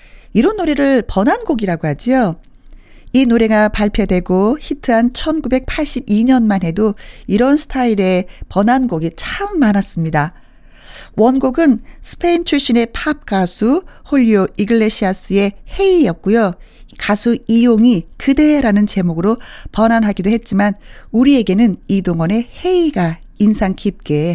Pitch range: 180-250 Hz